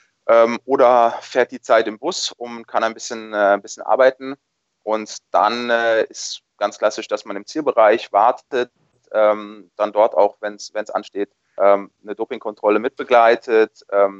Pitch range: 100-115 Hz